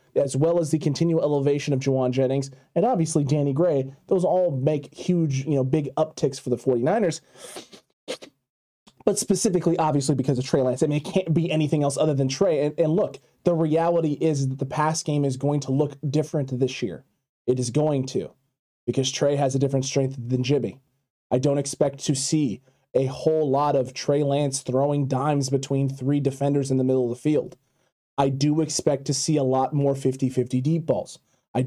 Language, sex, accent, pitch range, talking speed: English, male, American, 135-165 Hz, 195 wpm